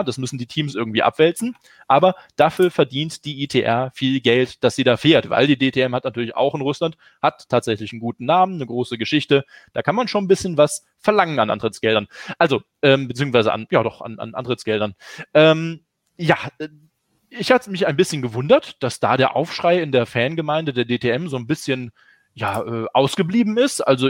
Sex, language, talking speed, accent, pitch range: male, German, 190 wpm, German, 125-170 Hz